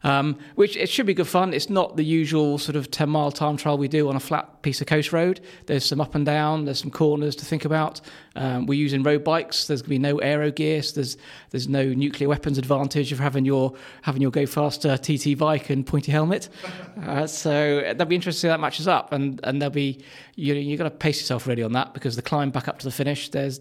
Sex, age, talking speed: male, 20-39, 250 wpm